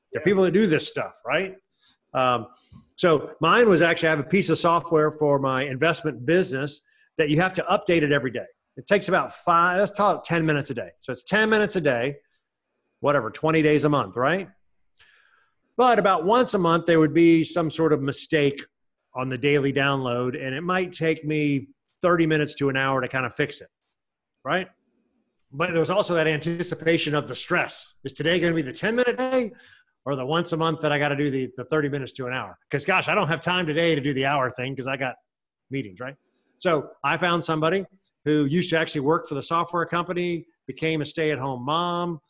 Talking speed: 215 wpm